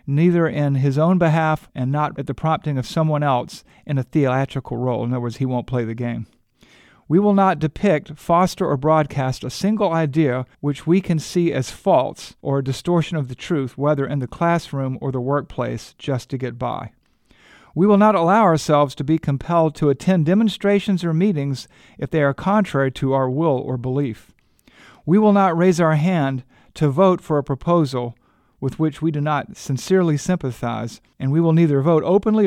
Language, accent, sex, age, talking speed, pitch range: English, American, male, 50-69, 190 wpm, 130-170 Hz